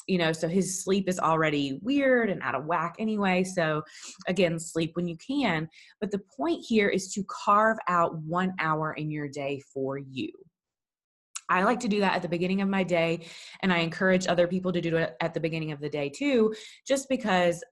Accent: American